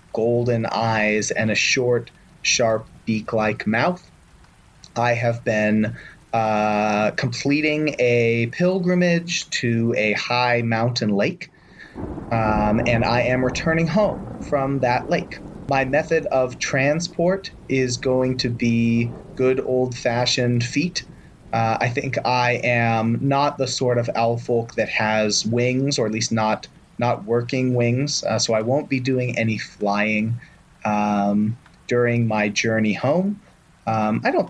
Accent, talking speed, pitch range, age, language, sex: American, 135 wpm, 110-130 Hz, 30-49, English, male